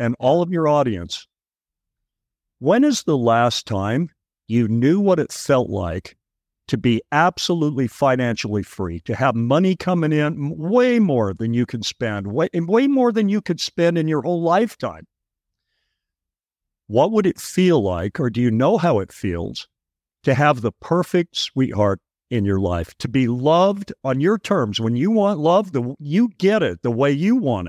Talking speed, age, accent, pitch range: 175 wpm, 50-69, American, 115-180 Hz